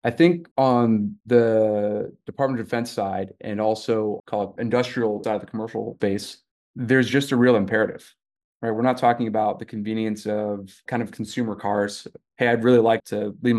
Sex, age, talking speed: male, 30-49, 180 wpm